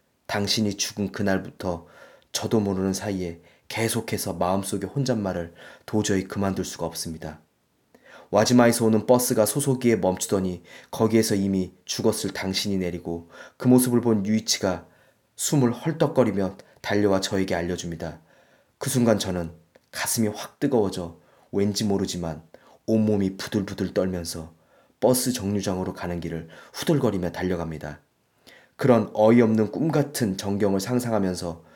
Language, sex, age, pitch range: Korean, male, 20-39, 90-115 Hz